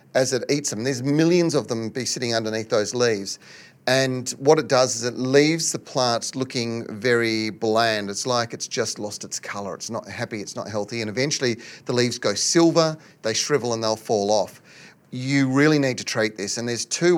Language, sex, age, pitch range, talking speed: English, male, 30-49, 110-135 Hz, 205 wpm